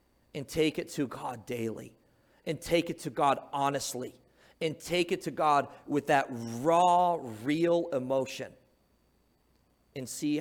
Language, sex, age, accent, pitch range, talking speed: English, male, 40-59, American, 130-170 Hz, 140 wpm